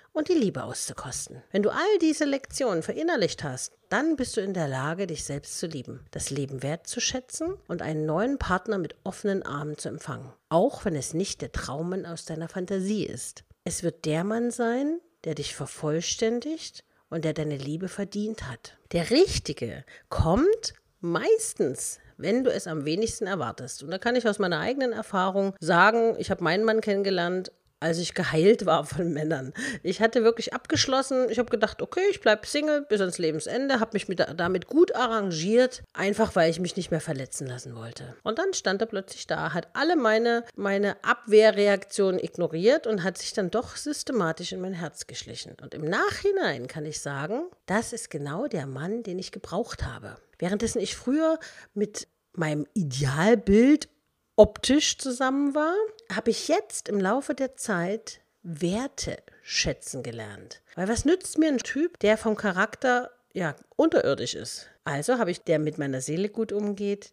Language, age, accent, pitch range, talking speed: German, 50-69, German, 160-240 Hz, 175 wpm